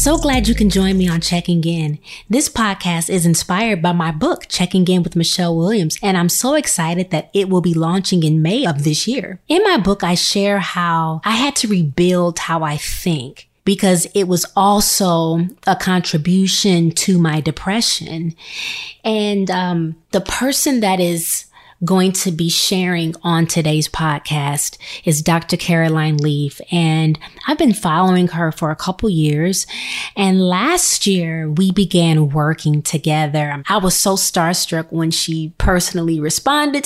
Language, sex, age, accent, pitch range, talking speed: English, female, 20-39, American, 165-205 Hz, 160 wpm